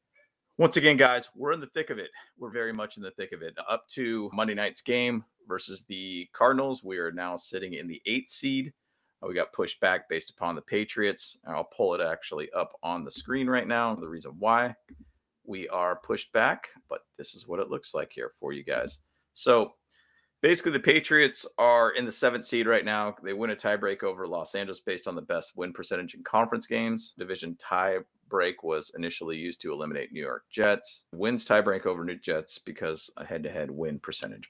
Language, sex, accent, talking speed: English, male, American, 205 wpm